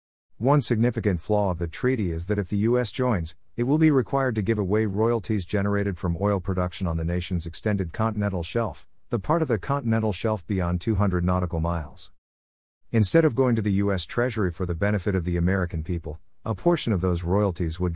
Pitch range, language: 90-110 Hz, English